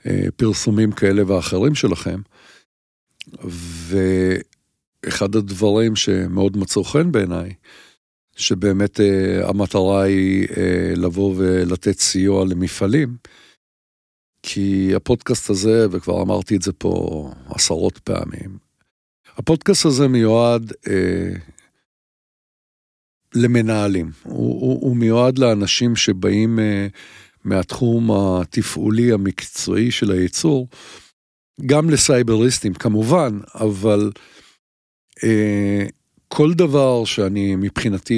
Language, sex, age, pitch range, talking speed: English, male, 50-69, 95-115 Hz, 80 wpm